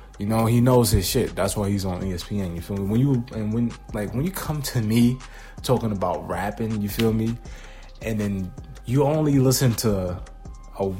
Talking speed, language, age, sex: 200 wpm, English, 20-39, male